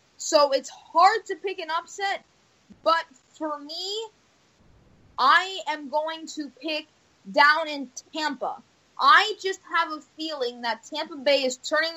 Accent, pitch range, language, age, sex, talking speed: American, 265-315 Hz, English, 20-39, female, 140 wpm